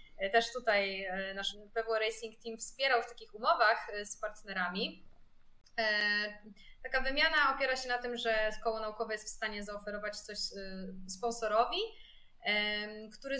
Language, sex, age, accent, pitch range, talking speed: Polish, female, 20-39, native, 205-235 Hz, 125 wpm